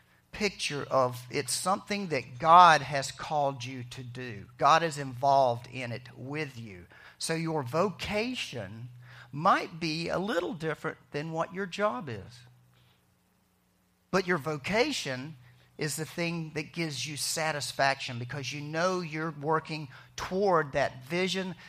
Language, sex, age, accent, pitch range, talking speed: English, male, 50-69, American, 125-175 Hz, 135 wpm